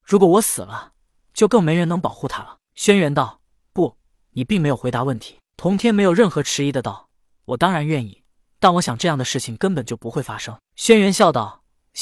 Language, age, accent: Chinese, 20-39, native